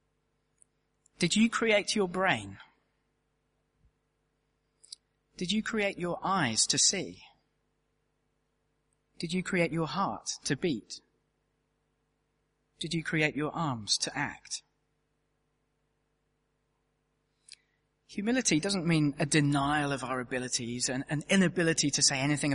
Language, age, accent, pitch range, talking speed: English, 40-59, British, 150-195 Hz, 105 wpm